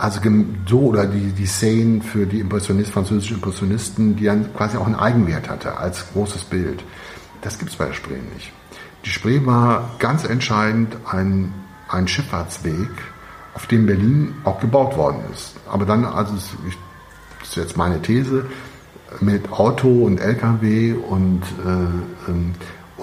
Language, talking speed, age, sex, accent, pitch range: German, 150 wpm, 60-79, male, German, 95-115 Hz